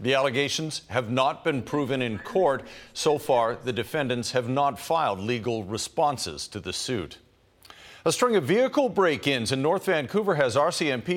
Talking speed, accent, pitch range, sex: 160 wpm, American, 120-155 Hz, male